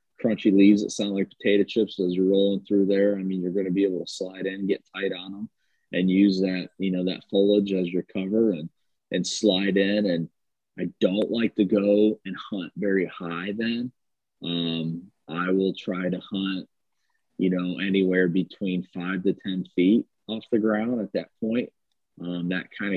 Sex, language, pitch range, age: male, English, 90-105 Hz, 30-49